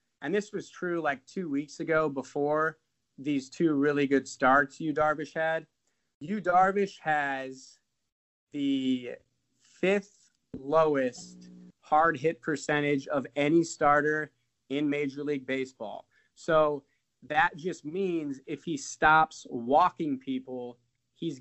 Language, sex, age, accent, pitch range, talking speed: English, male, 30-49, American, 130-160 Hz, 120 wpm